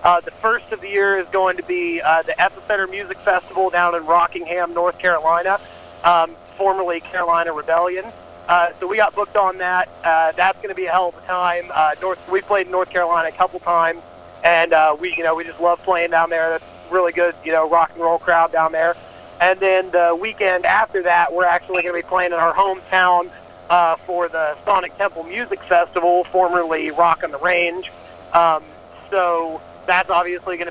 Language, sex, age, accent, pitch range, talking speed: English, male, 40-59, American, 170-185 Hz, 205 wpm